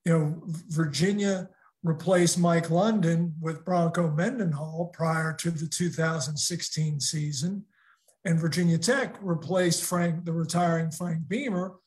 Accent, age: American, 50-69